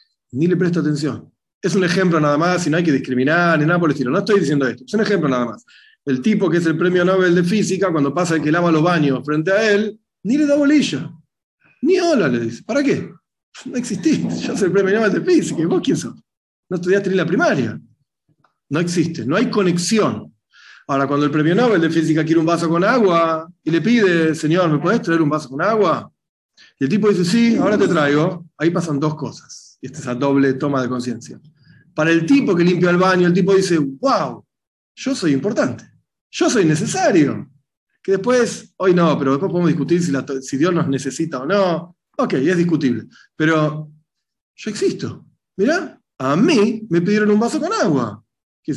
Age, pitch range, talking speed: 40-59, 150-195 Hz, 210 wpm